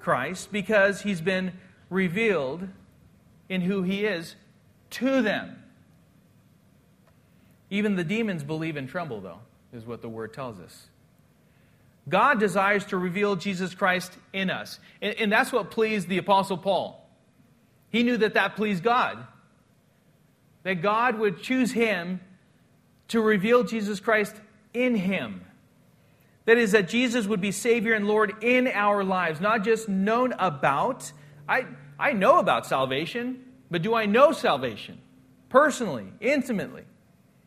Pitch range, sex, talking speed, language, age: 170-220 Hz, male, 135 wpm, English, 40-59